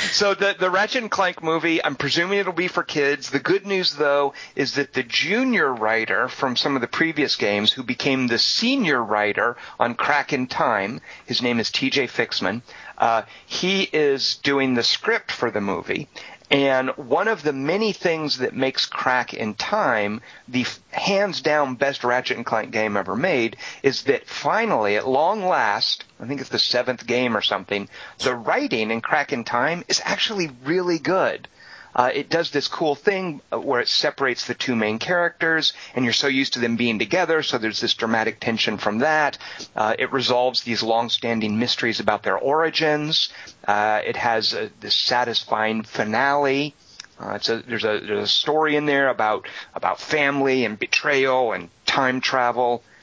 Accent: American